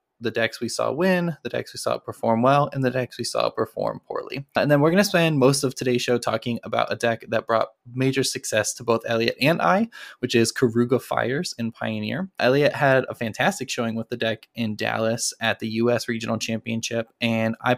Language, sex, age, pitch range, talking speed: English, male, 20-39, 115-140 Hz, 215 wpm